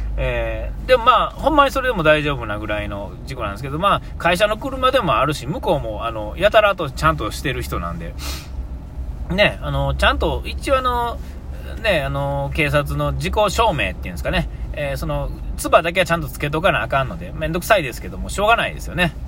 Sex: male